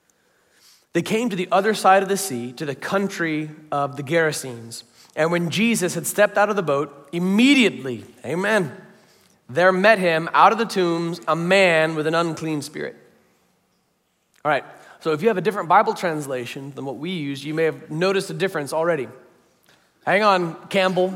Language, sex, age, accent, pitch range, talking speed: English, male, 30-49, American, 155-190 Hz, 180 wpm